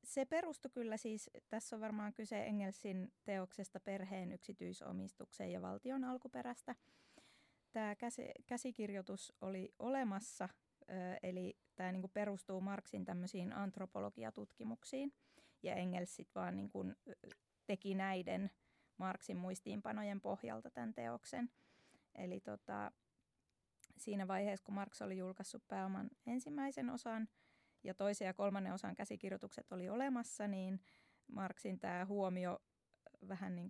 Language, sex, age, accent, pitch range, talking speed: Finnish, female, 20-39, native, 185-220 Hz, 115 wpm